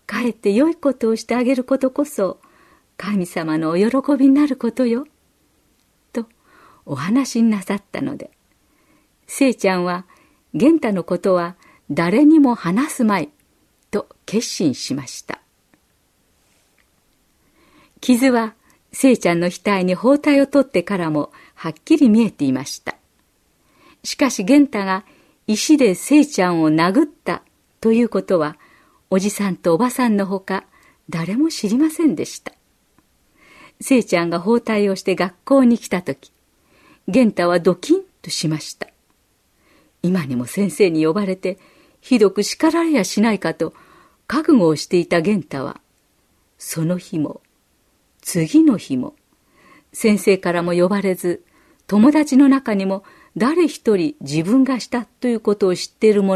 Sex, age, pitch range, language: female, 50-69, 180-265 Hz, Japanese